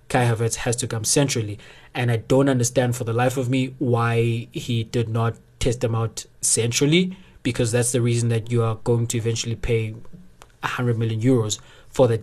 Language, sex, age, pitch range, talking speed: English, male, 20-39, 115-130 Hz, 190 wpm